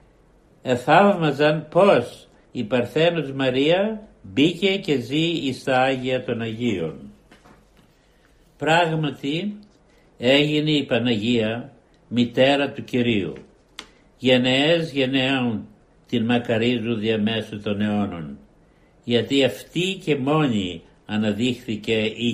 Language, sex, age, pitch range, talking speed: Greek, male, 60-79, 115-145 Hz, 90 wpm